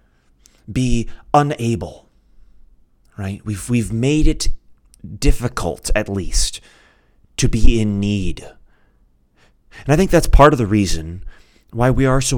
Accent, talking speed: American, 125 wpm